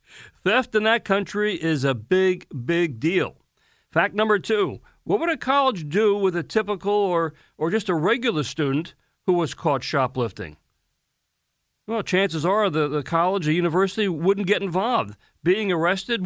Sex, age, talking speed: male, 50-69, 160 wpm